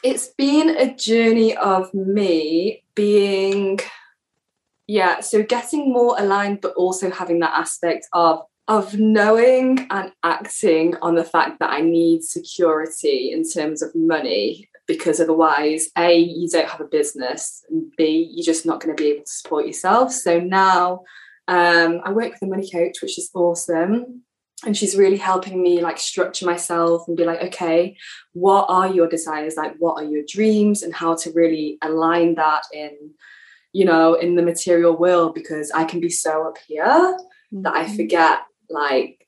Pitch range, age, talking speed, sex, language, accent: 165-215 Hz, 20-39, 170 wpm, female, English, British